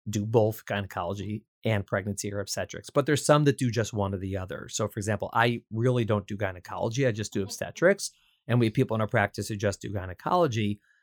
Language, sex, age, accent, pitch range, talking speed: English, male, 30-49, American, 105-135 Hz, 220 wpm